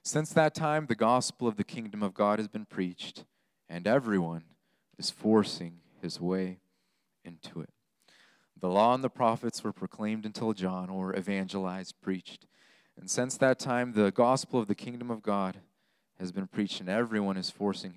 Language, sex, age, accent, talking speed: English, male, 30-49, American, 170 wpm